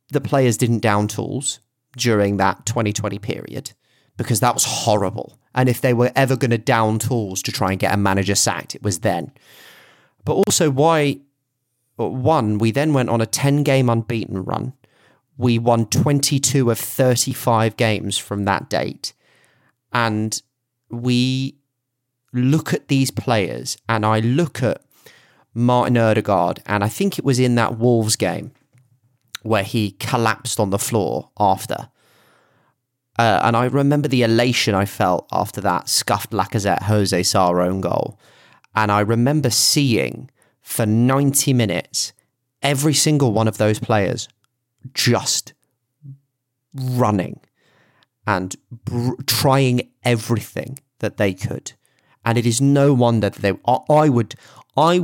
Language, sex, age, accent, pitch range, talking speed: English, male, 30-49, British, 110-135 Hz, 140 wpm